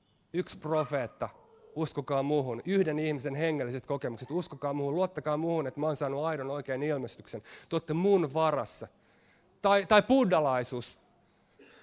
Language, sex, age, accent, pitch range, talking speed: Finnish, male, 30-49, native, 155-205 Hz, 125 wpm